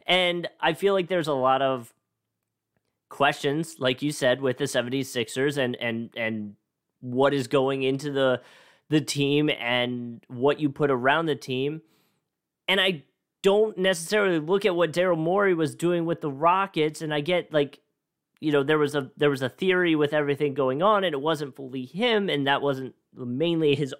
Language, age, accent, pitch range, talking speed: English, 30-49, American, 135-175 Hz, 185 wpm